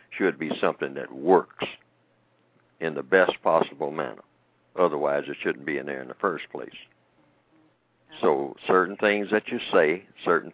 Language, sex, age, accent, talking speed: English, male, 60-79, American, 155 wpm